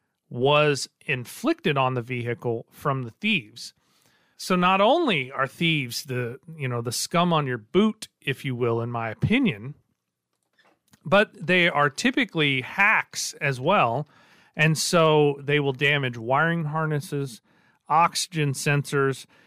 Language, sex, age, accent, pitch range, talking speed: English, male, 40-59, American, 125-165 Hz, 135 wpm